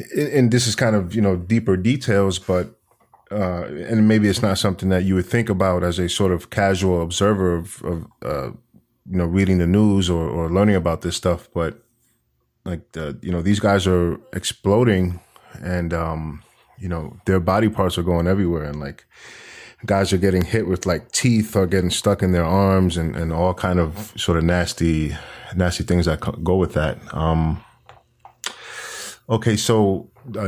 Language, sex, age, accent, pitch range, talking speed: English, male, 20-39, American, 85-100 Hz, 185 wpm